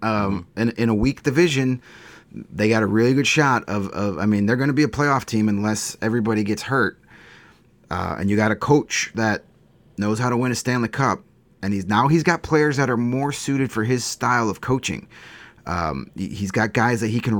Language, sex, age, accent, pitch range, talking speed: English, male, 30-49, American, 105-135 Hz, 215 wpm